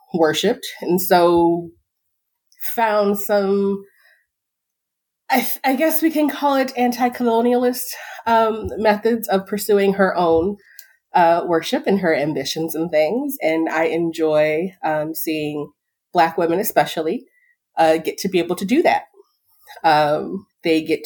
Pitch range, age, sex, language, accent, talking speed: 155-220 Hz, 30-49, female, English, American, 130 wpm